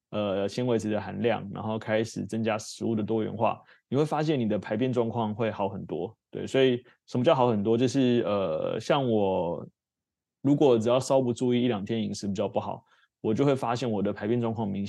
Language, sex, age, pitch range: Chinese, male, 20-39, 105-120 Hz